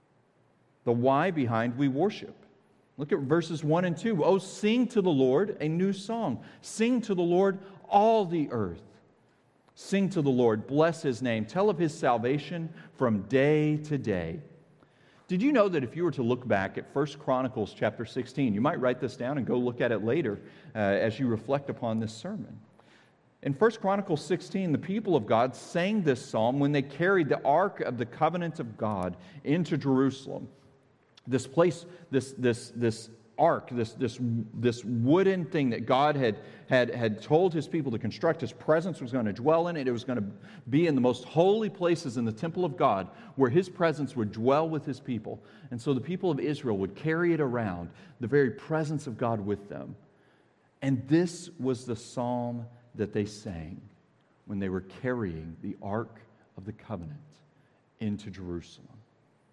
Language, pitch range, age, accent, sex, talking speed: English, 115-165 Hz, 40-59, American, male, 185 wpm